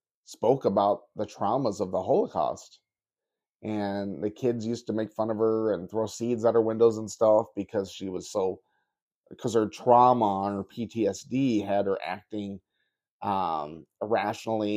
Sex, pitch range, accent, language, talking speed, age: male, 100-130 Hz, American, English, 155 wpm, 30-49